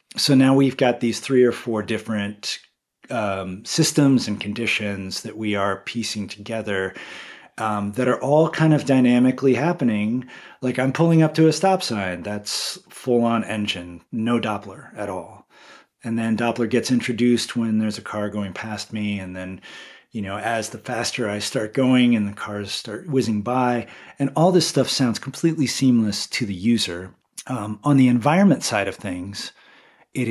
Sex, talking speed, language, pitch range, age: male, 175 wpm, English, 105-130 Hz, 30-49